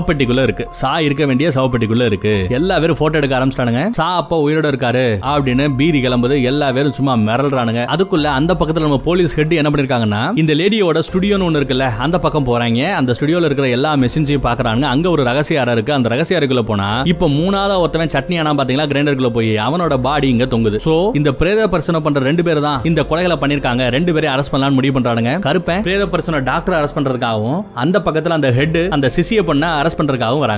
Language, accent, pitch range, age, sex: Tamil, native, 130-165 Hz, 20-39, male